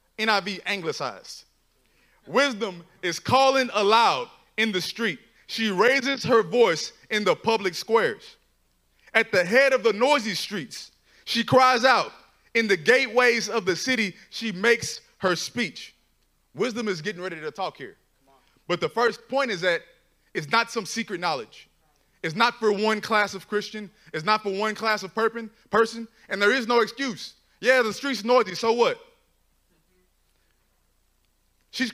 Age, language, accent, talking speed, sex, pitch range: 20-39, English, American, 155 wpm, male, 205-240 Hz